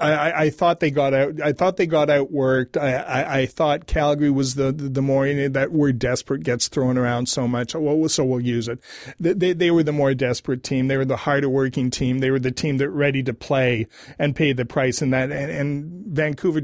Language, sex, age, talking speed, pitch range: English, male, 40-59, 240 wpm, 125-145 Hz